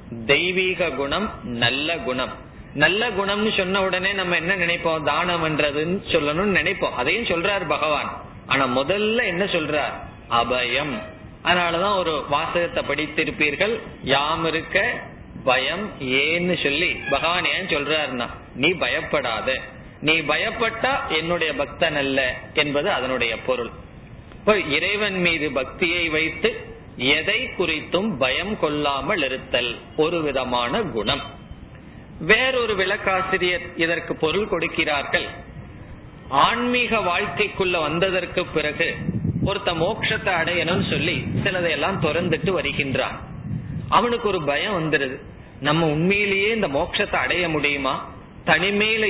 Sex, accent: male, native